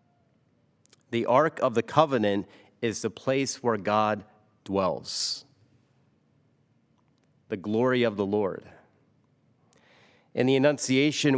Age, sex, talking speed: 40-59, male, 100 wpm